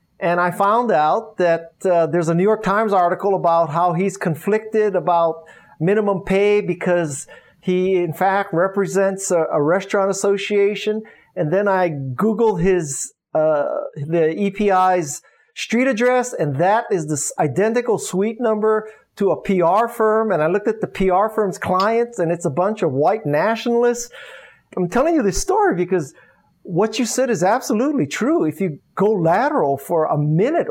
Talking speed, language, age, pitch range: 160 wpm, English, 50-69, 170-220 Hz